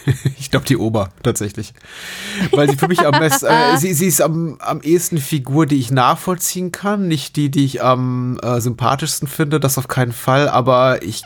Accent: German